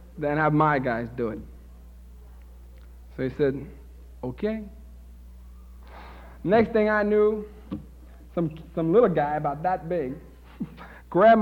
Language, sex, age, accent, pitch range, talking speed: English, male, 50-69, American, 140-195 Hz, 115 wpm